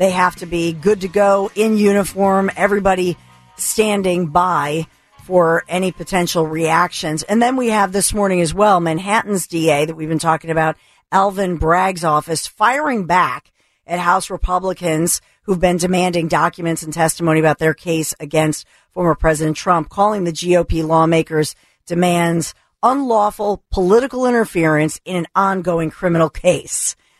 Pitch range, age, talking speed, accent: 160-195 Hz, 50-69, 145 wpm, American